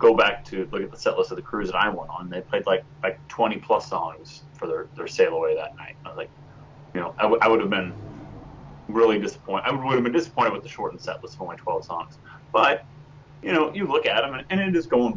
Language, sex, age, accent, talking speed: English, male, 30-49, American, 270 wpm